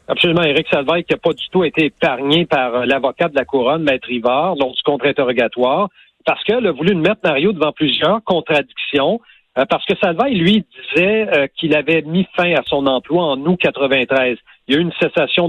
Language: French